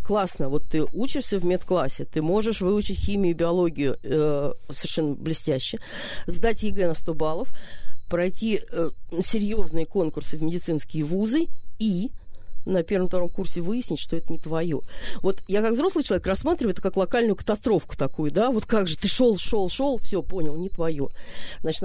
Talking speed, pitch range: 165 wpm, 165-215 Hz